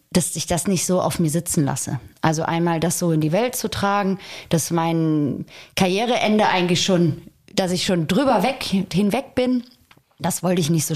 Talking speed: 190 wpm